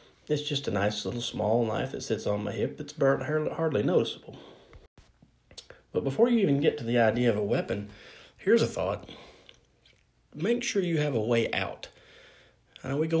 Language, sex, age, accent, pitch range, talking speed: English, male, 30-49, American, 100-140 Hz, 175 wpm